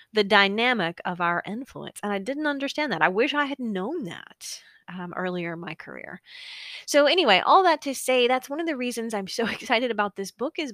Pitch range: 185-275 Hz